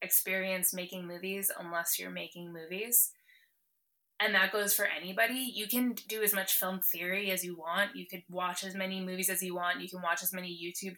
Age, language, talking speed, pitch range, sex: 20-39, English, 200 wpm, 185-215 Hz, female